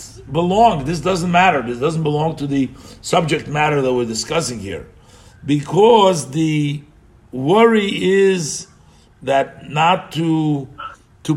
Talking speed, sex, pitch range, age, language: 120 wpm, male, 130-175 Hz, 50-69, English